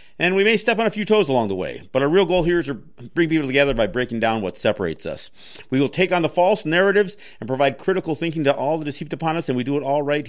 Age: 50-69